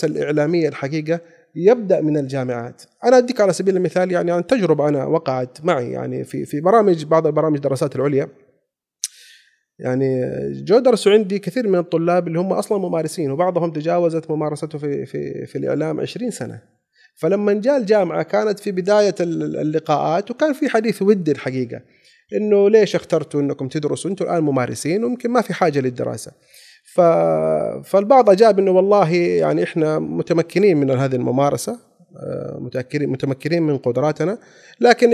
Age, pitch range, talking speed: 30-49, 145-195 Hz, 145 wpm